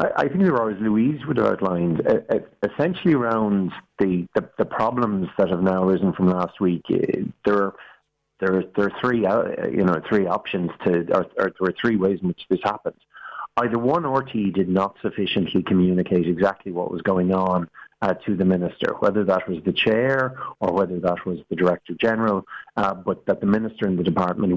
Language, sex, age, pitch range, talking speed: English, male, 50-69, 90-105 Hz, 195 wpm